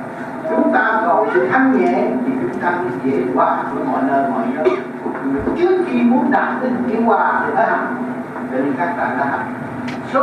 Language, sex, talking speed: Vietnamese, male, 165 wpm